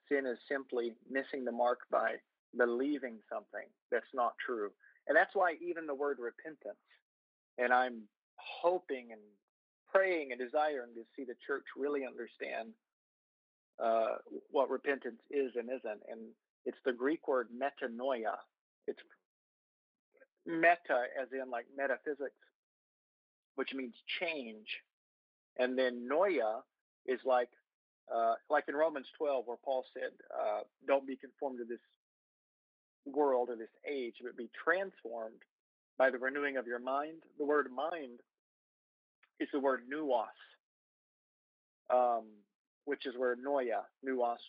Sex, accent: male, American